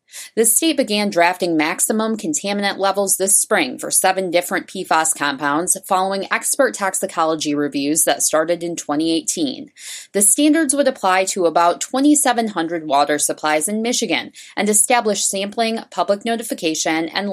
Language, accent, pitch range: English, American, 165-235 Hz